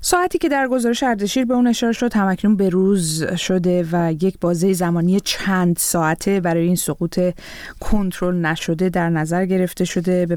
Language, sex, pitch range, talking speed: Persian, female, 170-195 Hz, 170 wpm